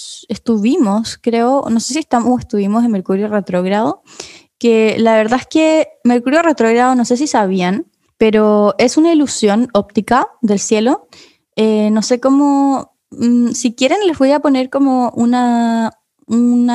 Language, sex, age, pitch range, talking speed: Spanish, female, 20-39, 215-260 Hz, 150 wpm